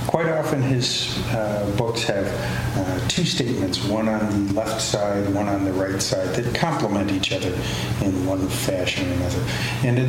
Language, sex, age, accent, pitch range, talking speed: English, male, 50-69, American, 105-120 Hz, 180 wpm